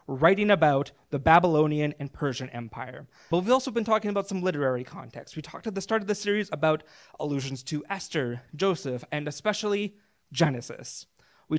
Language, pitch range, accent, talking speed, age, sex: English, 135-190 Hz, American, 170 wpm, 20-39, male